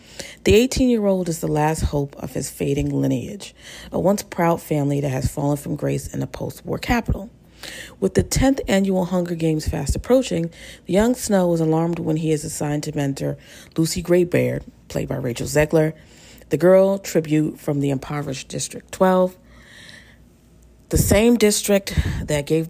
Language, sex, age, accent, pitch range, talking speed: English, female, 40-59, American, 135-180 Hz, 160 wpm